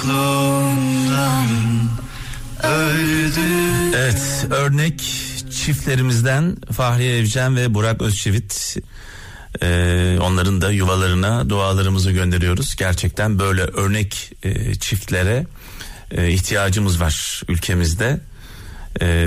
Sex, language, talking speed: male, Turkish, 75 wpm